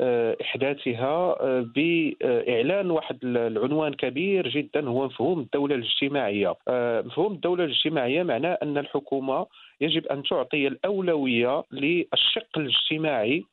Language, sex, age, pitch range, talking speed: English, male, 40-59, 130-165 Hz, 100 wpm